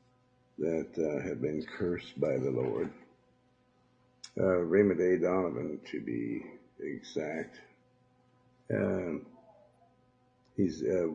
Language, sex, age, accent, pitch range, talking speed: English, male, 60-79, American, 90-120 Hz, 95 wpm